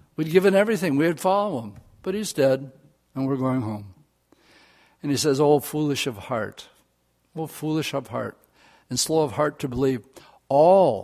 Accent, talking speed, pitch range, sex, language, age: American, 170 wpm, 130-160 Hz, male, English, 60-79